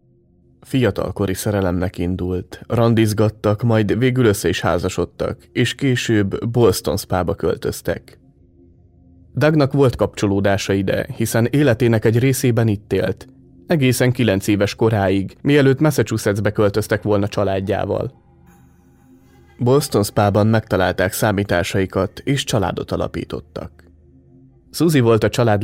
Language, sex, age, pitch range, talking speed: Hungarian, male, 30-49, 95-120 Hz, 100 wpm